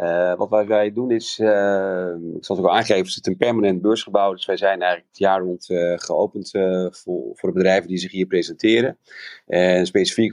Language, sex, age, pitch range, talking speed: Dutch, male, 40-59, 85-100 Hz, 215 wpm